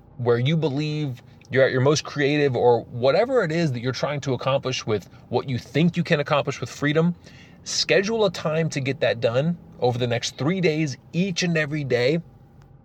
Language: English